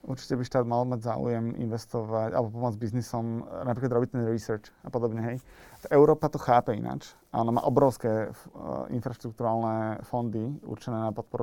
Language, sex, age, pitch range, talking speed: Slovak, male, 30-49, 115-130 Hz, 165 wpm